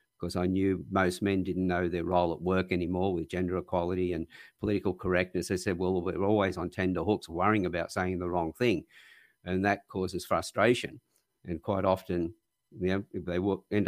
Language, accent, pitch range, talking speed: English, Australian, 90-100 Hz, 175 wpm